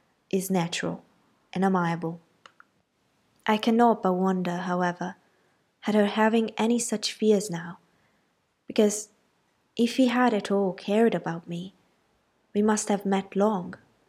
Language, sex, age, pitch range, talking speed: Italian, female, 20-39, 180-220 Hz, 130 wpm